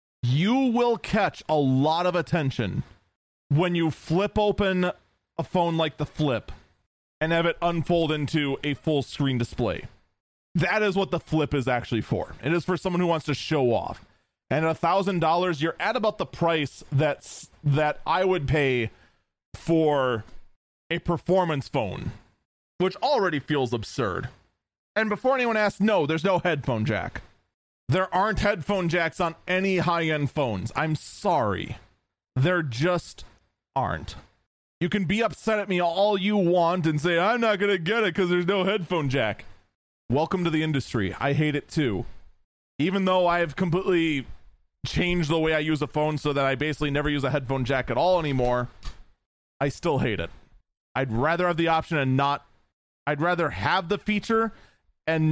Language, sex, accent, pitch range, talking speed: English, male, American, 135-180 Hz, 170 wpm